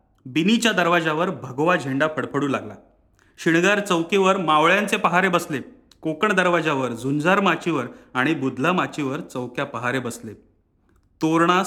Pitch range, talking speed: 125-190 Hz, 115 wpm